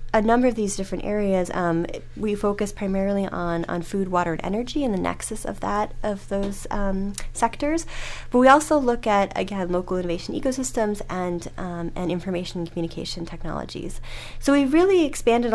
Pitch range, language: 170-205 Hz, English